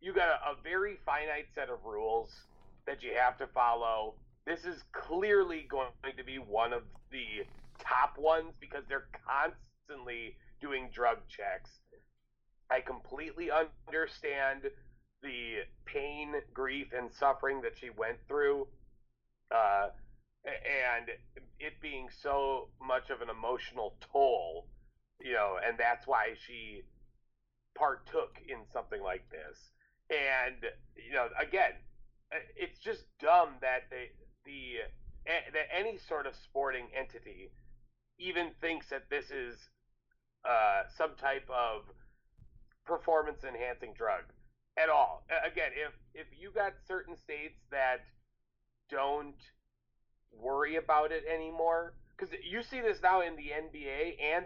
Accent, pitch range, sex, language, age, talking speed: American, 125-180 Hz, male, English, 30-49, 125 wpm